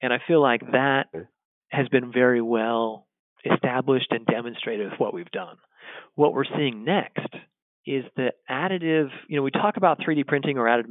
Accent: American